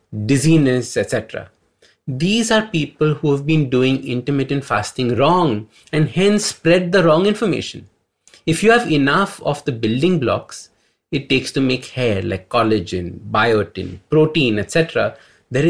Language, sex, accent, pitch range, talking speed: English, male, Indian, 120-170 Hz, 140 wpm